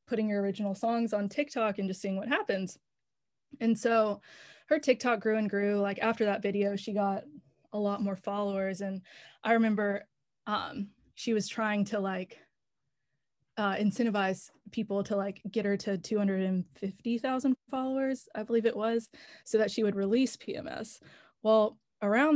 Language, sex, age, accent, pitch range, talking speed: English, female, 20-39, American, 195-230 Hz, 160 wpm